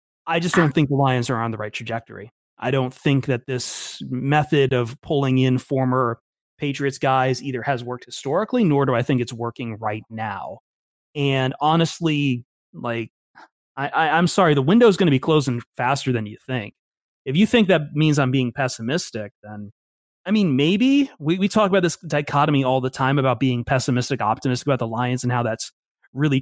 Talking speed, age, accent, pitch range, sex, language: 195 wpm, 30-49, American, 120-145 Hz, male, English